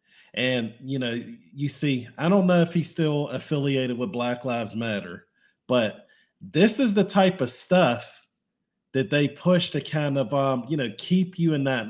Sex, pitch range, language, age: male, 130-165 Hz, English, 40-59